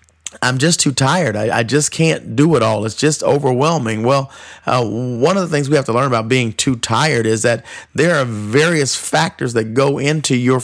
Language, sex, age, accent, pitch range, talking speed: English, male, 40-59, American, 115-140 Hz, 215 wpm